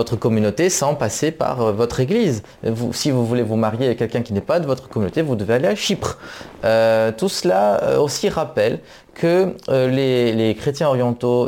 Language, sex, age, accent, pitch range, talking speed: French, male, 30-49, French, 120-150 Hz, 185 wpm